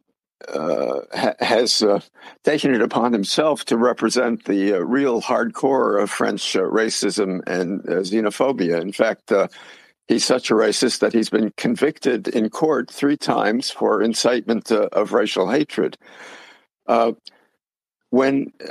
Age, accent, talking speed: 60-79, American, 140 wpm